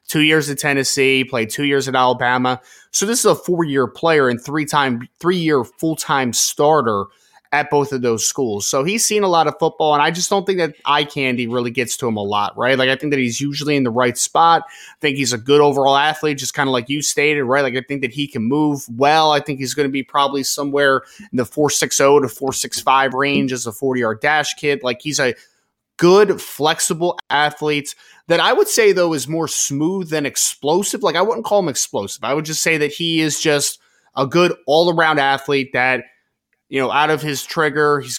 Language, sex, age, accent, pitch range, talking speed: English, male, 20-39, American, 130-155 Hz, 220 wpm